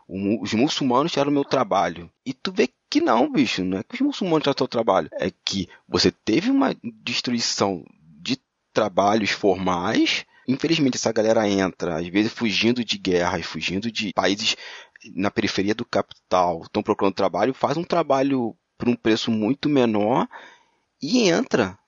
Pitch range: 95-120 Hz